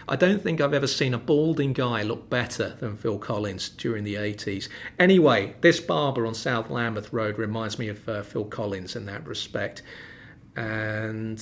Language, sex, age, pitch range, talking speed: English, male, 40-59, 105-125 Hz, 180 wpm